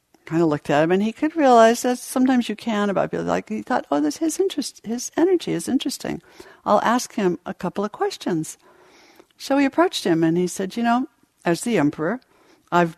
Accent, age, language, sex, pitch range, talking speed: American, 60-79, English, female, 155-230 Hz, 215 wpm